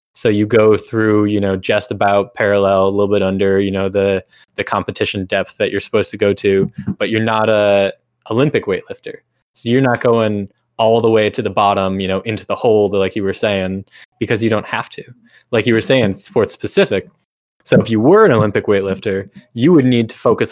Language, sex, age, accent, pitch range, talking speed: English, male, 20-39, American, 100-115 Hz, 215 wpm